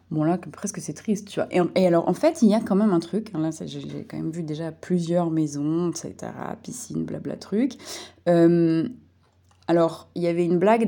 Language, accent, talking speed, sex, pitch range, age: French, French, 230 wpm, female, 160-230 Hz, 20-39